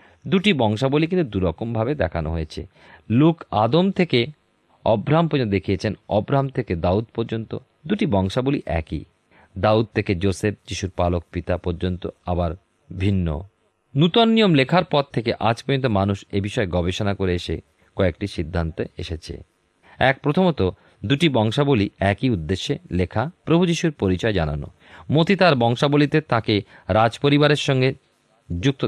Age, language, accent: 40-59, Bengali, native